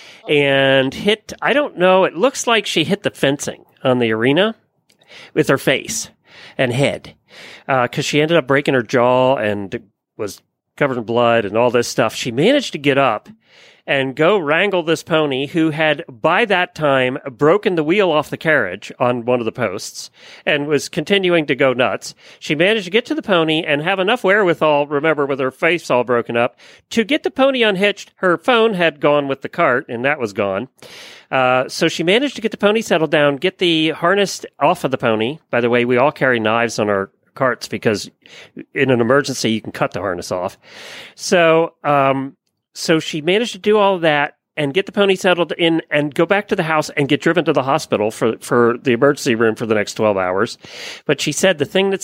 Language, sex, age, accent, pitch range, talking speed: English, male, 40-59, American, 135-195 Hz, 210 wpm